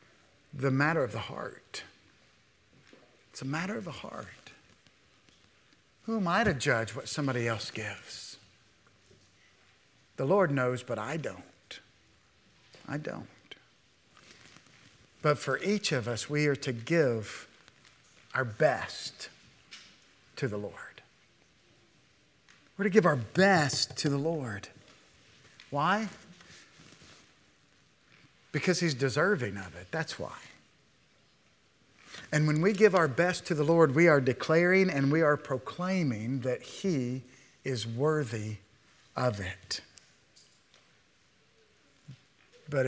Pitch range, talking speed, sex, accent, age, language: 125-160 Hz, 115 wpm, male, American, 50-69, English